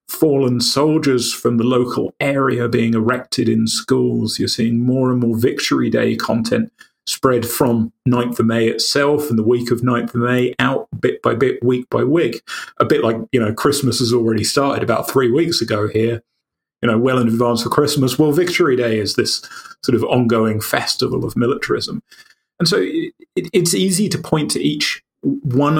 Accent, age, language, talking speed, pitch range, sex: British, 30-49, Polish, 185 wpm, 115-140 Hz, male